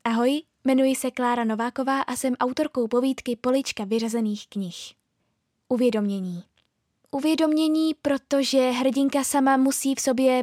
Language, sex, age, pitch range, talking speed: Czech, female, 20-39, 230-275 Hz, 115 wpm